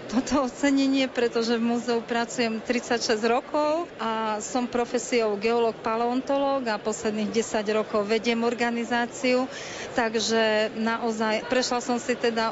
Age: 40-59